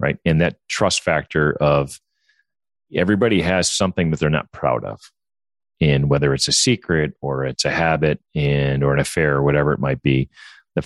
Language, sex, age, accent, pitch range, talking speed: English, male, 40-59, American, 70-85 Hz, 180 wpm